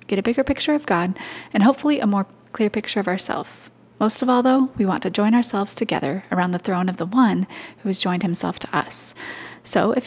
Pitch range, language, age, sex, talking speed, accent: 185-240 Hz, English, 20-39, female, 225 wpm, American